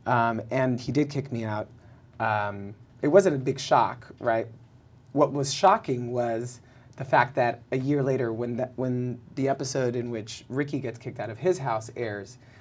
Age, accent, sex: 30-49, American, male